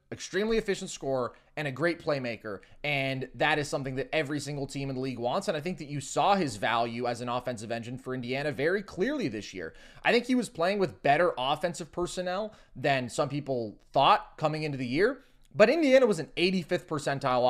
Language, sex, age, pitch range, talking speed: English, male, 20-39, 130-175 Hz, 205 wpm